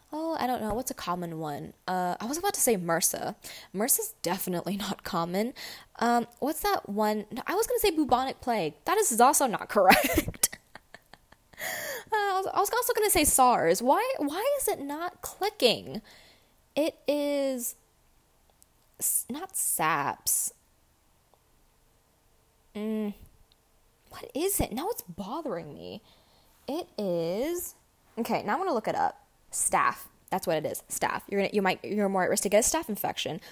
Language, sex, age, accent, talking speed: English, female, 10-29, American, 165 wpm